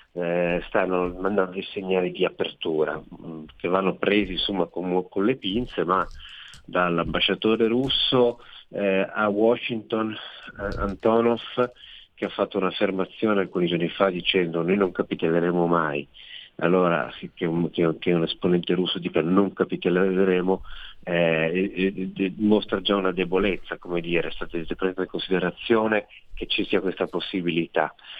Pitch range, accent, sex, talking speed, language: 85-100 Hz, native, male, 130 wpm, Italian